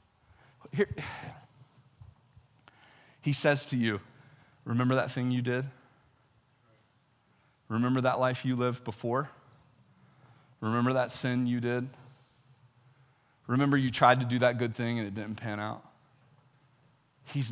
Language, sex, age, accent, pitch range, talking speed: English, male, 40-59, American, 125-155 Hz, 115 wpm